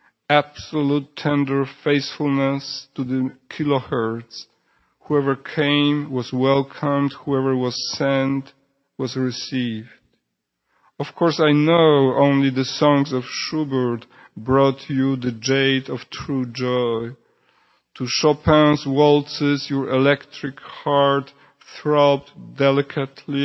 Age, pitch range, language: 50-69, 130-145 Hz, English